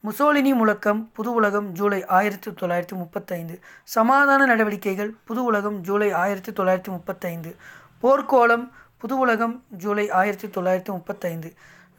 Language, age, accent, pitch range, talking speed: Tamil, 20-39, native, 190-230 Hz, 90 wpm